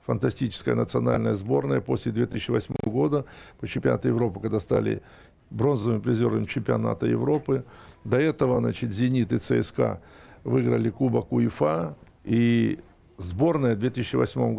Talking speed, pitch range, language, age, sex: 115 wpm, 110-135 Hz, Russian, 60-79, male